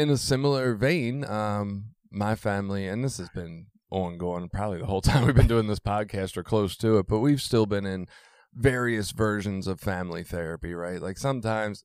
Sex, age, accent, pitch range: male, 20-39, American, 90-110 Hz